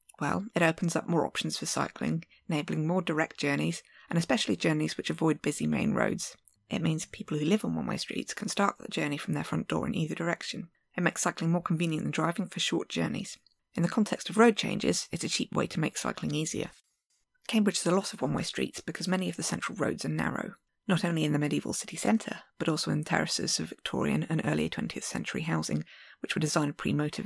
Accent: British